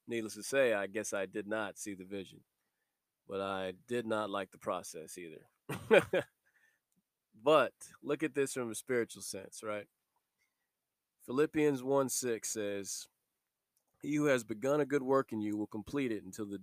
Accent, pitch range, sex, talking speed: American, 105-125 Hz, male, 160 wpm